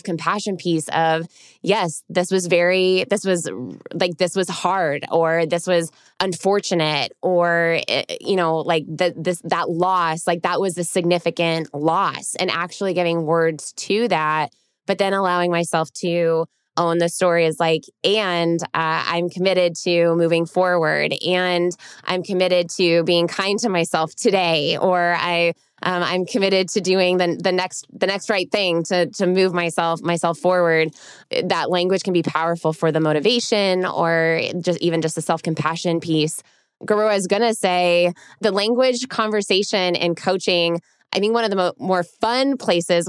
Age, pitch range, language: 20-39, 170-190 Hz, English